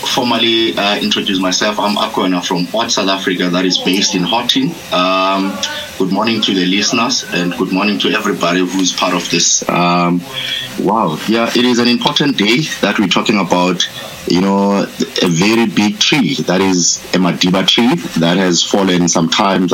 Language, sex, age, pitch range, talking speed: English, male, 30-49, 95-115 Hz, 175 wpm